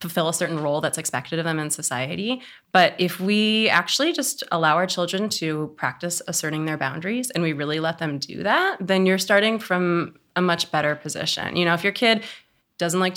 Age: 20-39